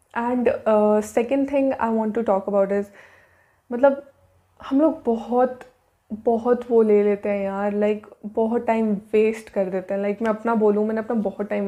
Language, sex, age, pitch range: Hindi, female, 20-39, 215-250 Hz